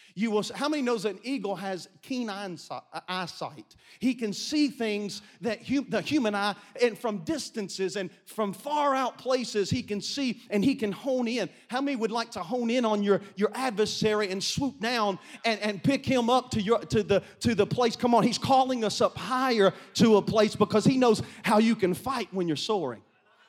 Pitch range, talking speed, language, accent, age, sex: 215-270 Hz, 210 wpm, English, American, 40-59, male